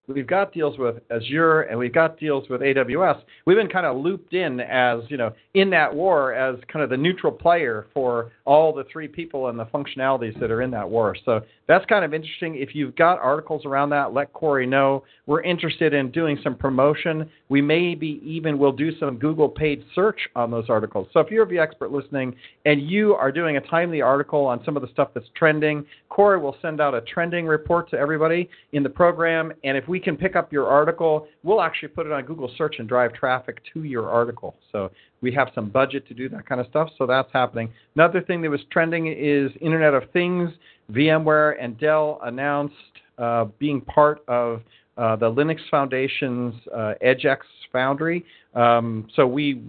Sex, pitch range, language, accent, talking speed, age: male, 125-155 Hz, English, American, 205 wpm, 40-59